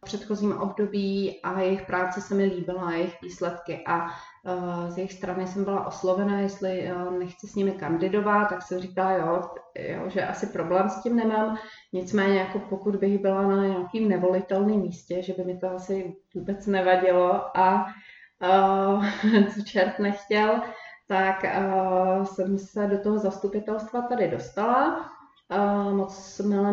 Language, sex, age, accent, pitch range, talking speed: Czech, female, 30-49, native, 185-205 Hz, 140 wpm